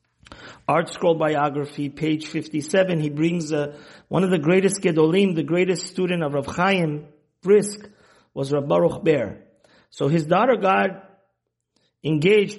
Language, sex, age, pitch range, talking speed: English, male, 50-69, 155-210 Hz, 140 wpm